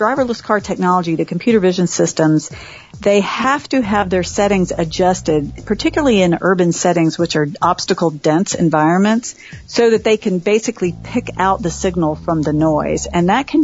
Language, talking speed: English, 165 wpm